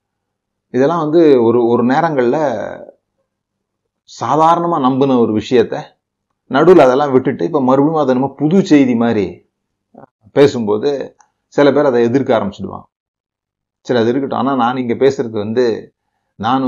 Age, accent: 30-49, native